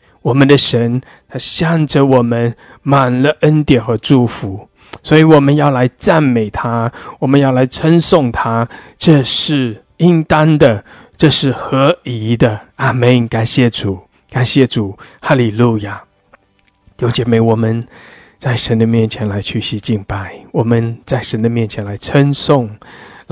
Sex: male